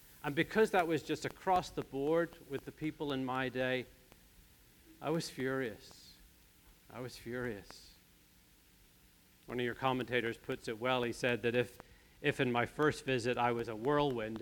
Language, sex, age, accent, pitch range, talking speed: English, male, 40-59, American, 115-150 Hz, 165 wpm